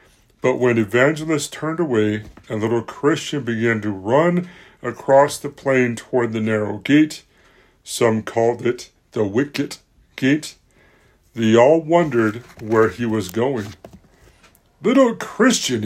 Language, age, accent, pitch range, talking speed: English, 60-79, American, 110-155 Hz, 125 wpm